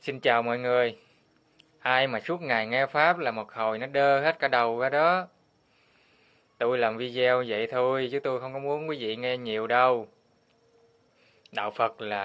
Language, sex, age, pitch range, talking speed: Vietnamese, male, 20-39, 125-175 Hz, 185 wpm